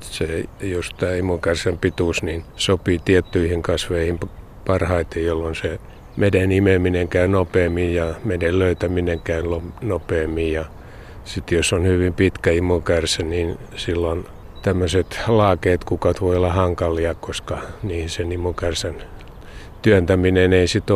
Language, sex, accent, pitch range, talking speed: Finnish, male, native, 85-95 Hz, 120 wpm